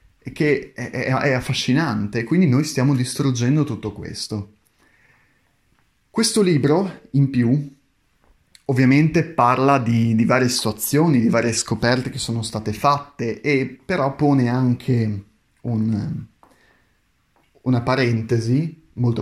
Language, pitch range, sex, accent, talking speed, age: Italian, 115-135 Hz, male, native, 110 wpm, 30-49